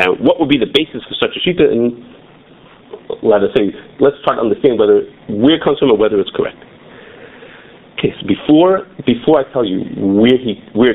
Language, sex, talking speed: English, male, 210 wpm